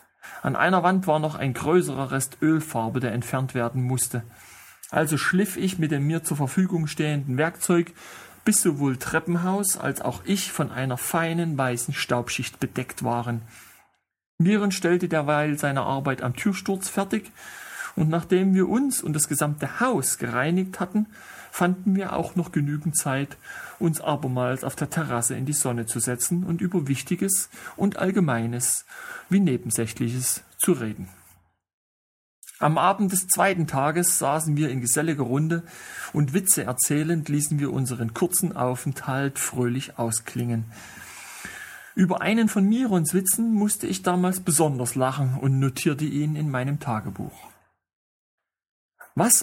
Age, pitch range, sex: 40-59, 125-180 Hz, male